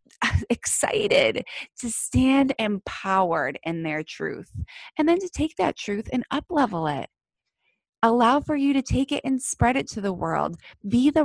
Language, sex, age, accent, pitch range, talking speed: English, female, 20-39, American, 170-220 Hz, 160 wpm